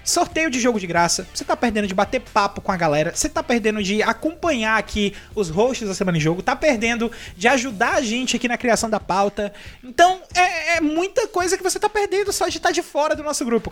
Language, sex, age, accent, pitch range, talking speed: Portuguese, male, 20-39, Brazilian, 200-265 Hz, 235 wpm